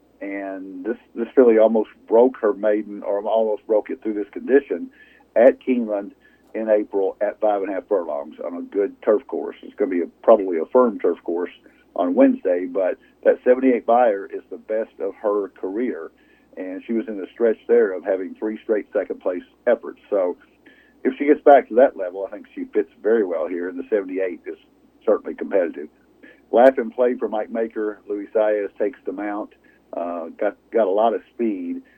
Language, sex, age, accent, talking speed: English, male, 50-69, American, 200 wpm